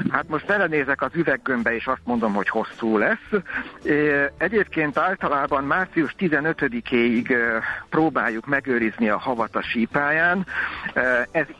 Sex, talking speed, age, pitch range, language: male, 110 wpm, 60-79, 120-160 Hz, Hungarian